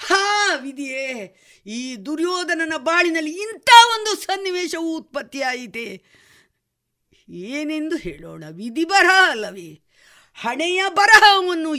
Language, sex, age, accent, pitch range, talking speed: Kannada, female, 50-69, native, 225-365 Hz, 80 wpm